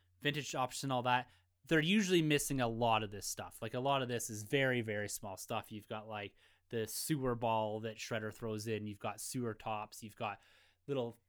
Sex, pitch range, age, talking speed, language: male, 115-165 Hz, 20-39, 215 wpm, English